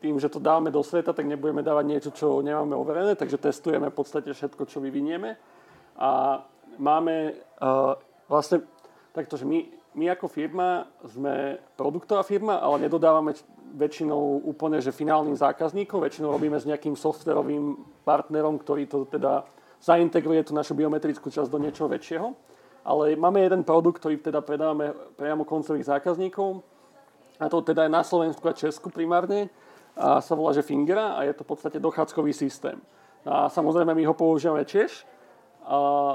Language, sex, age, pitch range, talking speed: Slovak, male, 40-59, 145-170 Hz, 155 wpm